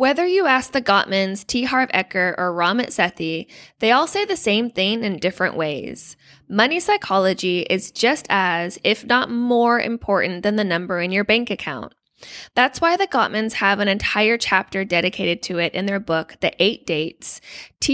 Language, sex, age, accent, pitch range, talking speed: English, female, 20-39, American, 185-240 Hz, 180 wpm